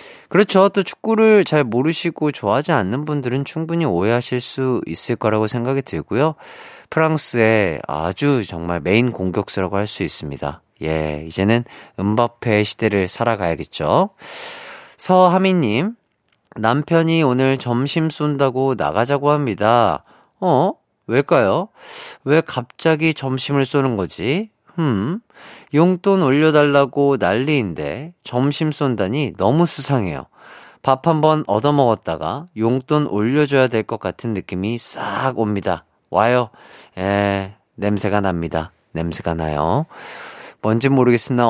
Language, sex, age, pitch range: Korean, male, 40-59, 105-155 Hz